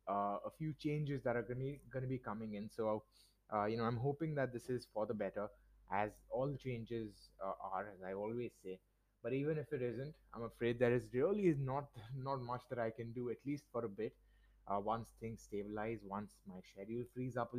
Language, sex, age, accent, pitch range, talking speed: English, male, 20-39, Indian, 110-135 Hz, 230 wpm